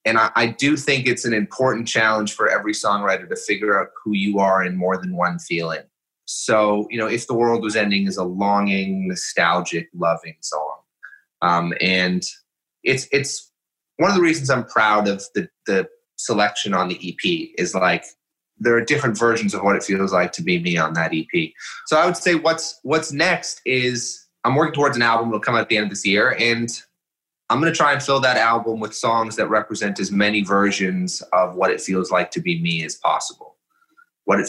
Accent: American